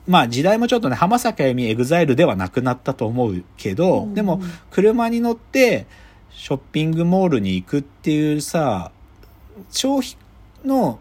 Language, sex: Japanese, male